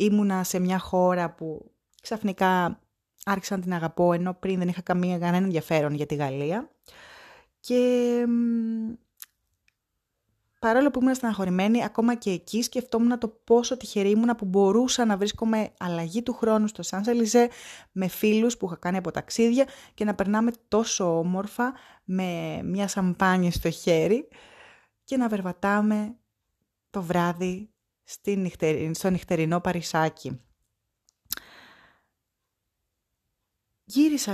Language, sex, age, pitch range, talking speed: Greek, female, 20-39, 170-225 Hz, 120 wpm